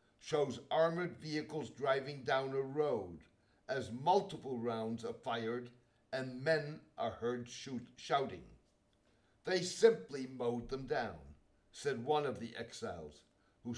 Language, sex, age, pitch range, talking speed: English, male, 60-79, 115-155 Hz, 125 wpm